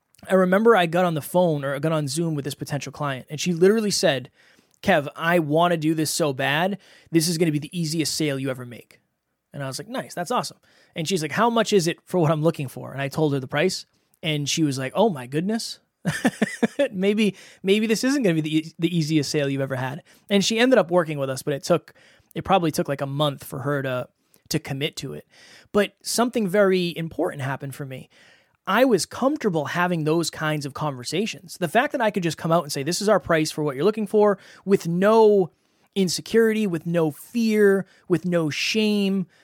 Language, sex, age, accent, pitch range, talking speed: English, male, 20-39, American, 150-200 Hz, 230 wpm